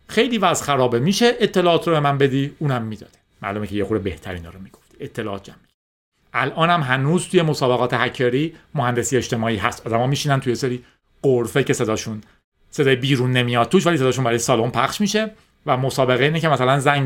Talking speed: 180 wpm